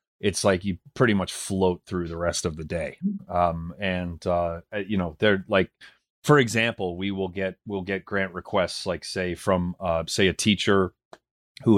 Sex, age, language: male, 30-49, English